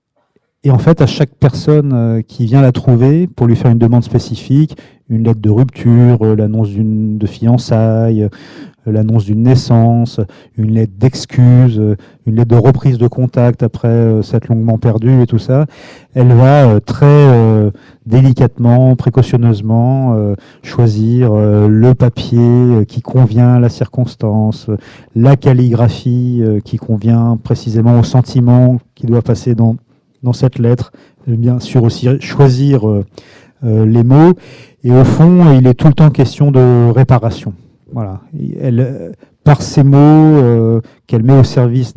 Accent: French